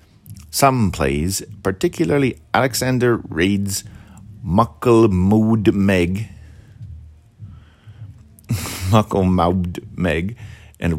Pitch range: 85-115 Hz